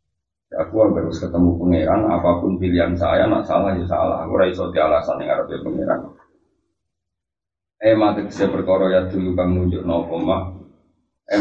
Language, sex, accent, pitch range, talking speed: Indonesian, male, native, 90-100 Hz, 155 wpm